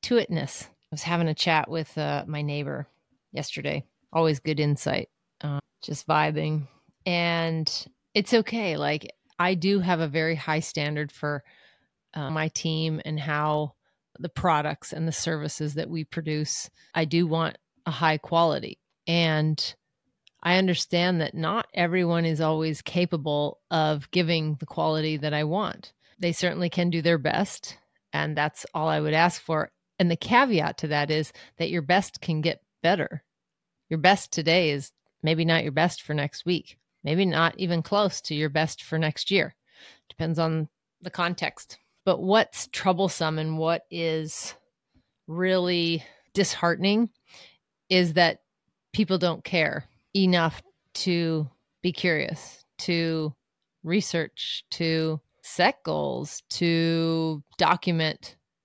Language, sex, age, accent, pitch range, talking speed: English, female, 30-49, American, 155-175 Hz, 140 wpm